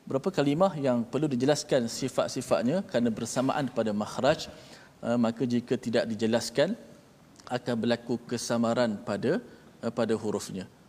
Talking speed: 110 wpm